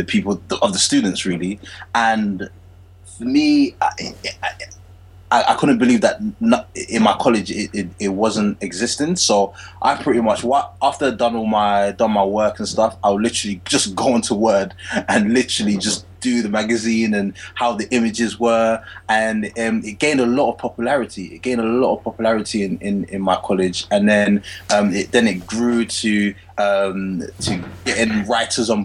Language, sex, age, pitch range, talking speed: English, male, 20-39, 95-120 Hz, 185 wpm